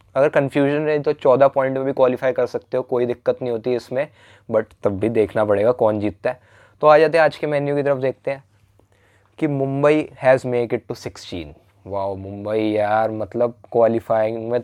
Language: English